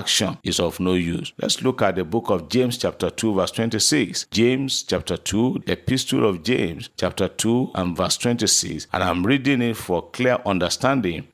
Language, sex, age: English, male, 50-69